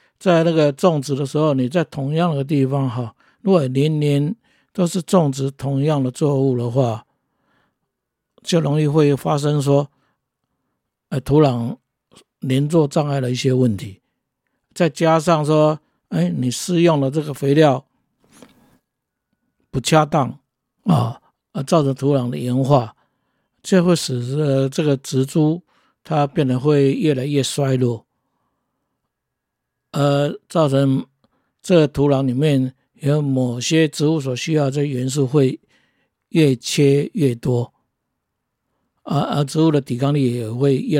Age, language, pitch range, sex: 50-69, Chinese, 130-160 Hz, male